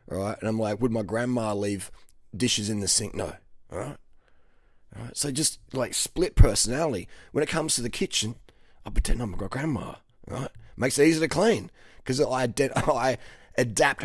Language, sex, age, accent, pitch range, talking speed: English, male, 20-39, Australian, 110-140 Hz, 180 wpm